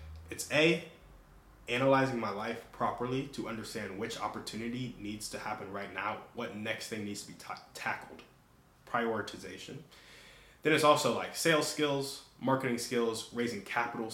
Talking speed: 140 wpm